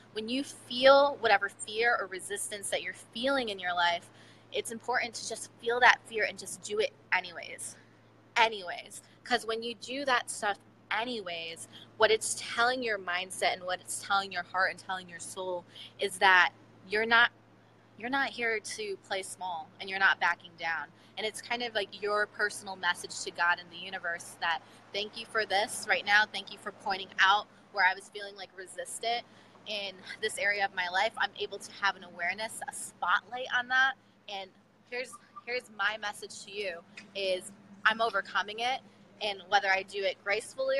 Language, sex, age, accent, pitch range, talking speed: English, female, 20-39, American, 190-235 Hz, 185 wpm